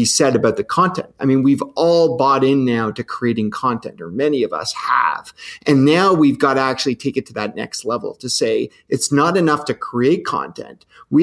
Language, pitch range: English, 125-155 Hz